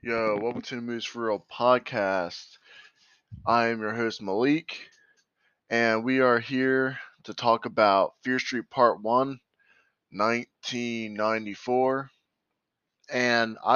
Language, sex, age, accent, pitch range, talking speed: English, male, 20-39, American, 105-125 Hz, 110 wpm